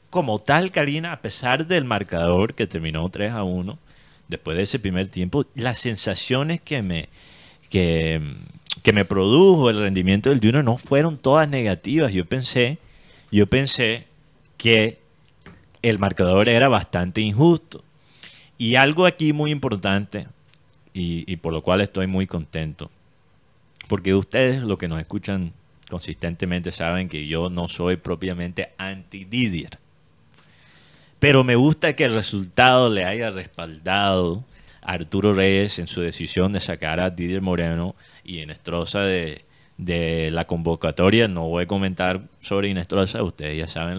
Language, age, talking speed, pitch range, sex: Spanish, 30-49, 140 wpm, 90-125 Hz, male